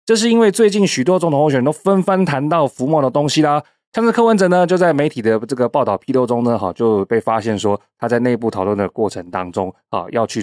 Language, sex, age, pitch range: Chinese, male, 20-39, 120-185 Hz